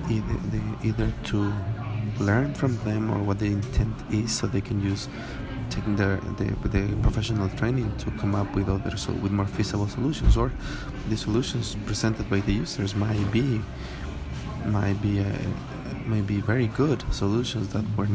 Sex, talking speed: male, 160 wpm